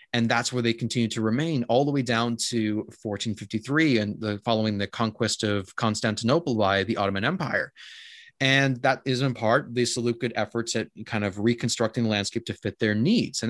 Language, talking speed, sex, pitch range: English, 190 wpm, male, 110-135 Hz